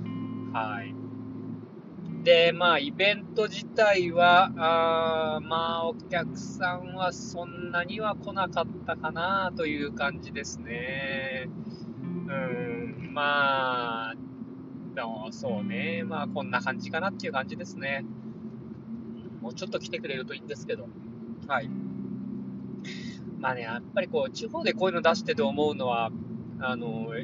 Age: 20-39